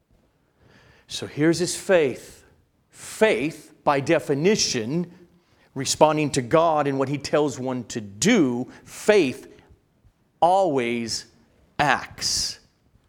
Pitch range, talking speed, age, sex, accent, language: 115-155 Hz, 90 wpm, 50-69, male, American, English